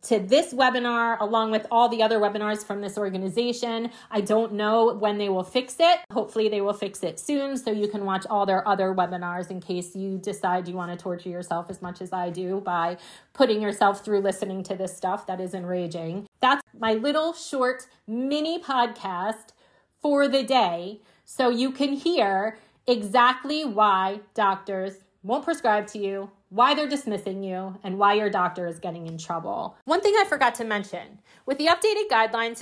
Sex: female